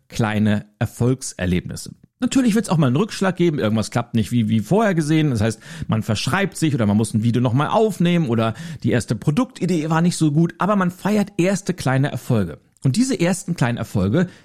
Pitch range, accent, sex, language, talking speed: 120-185 Hz, German, male, German, 200 wpm